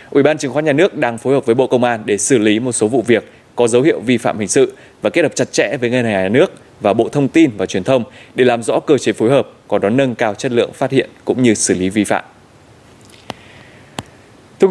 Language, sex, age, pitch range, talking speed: Vietnamese, male, 20-39, 105-130 Hz, 270 wpm